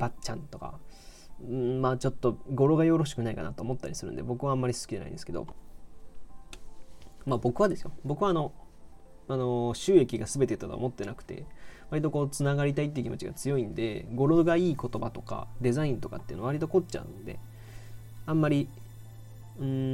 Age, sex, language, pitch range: 20-39, male, Japanese, 110-140 Hz